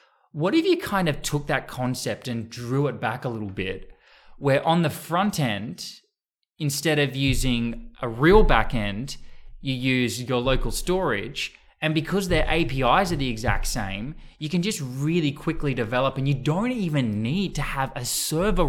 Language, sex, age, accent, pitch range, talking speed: English, male, 20-39, Australian, 125-175 Hz, 175 wpm